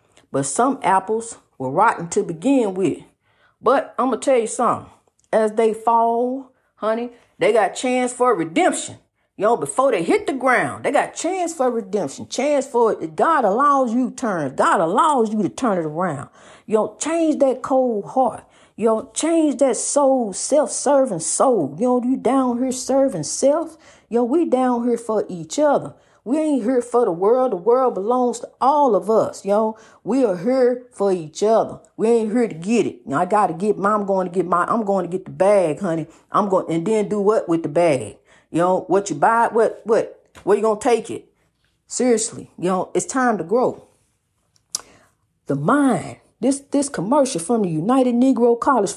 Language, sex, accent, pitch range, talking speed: English, female, American, 195-260 Hz, 195 wpm